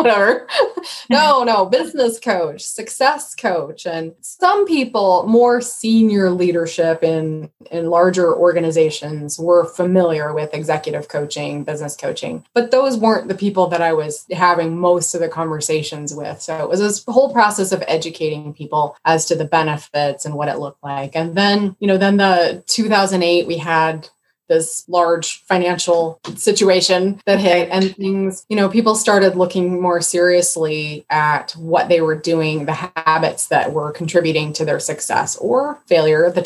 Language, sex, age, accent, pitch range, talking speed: English, female, 20-39, American, 160-195 Hz, 155 wpm